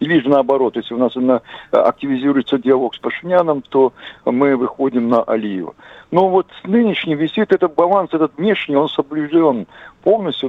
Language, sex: Russian, male